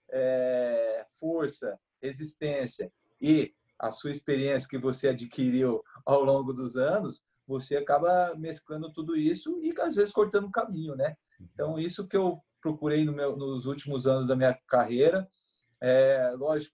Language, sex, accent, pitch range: Portuguese, male, Brazilian, 130-160 Hz